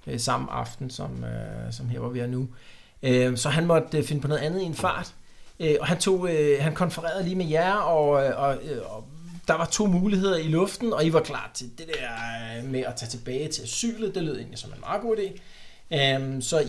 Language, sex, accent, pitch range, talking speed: Danish, male, native, 120-160 Hz, 210 wpm